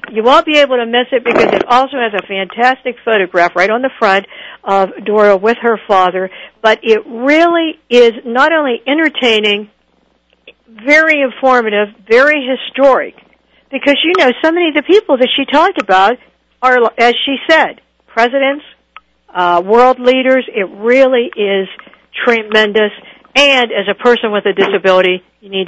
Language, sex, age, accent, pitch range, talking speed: English, female, 60-79, American, 195-260 Hz, 155 wpm